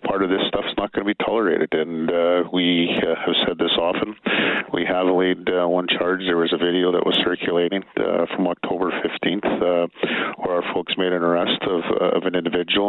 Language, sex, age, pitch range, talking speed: English, male, 50-69, 85-95 Hz, 220 wpm